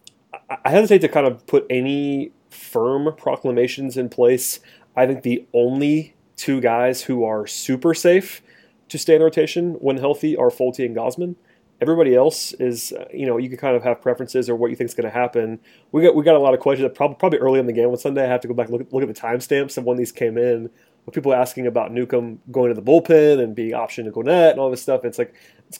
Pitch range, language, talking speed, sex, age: 120-135 Hz, English, 245 wpm, male, 30-49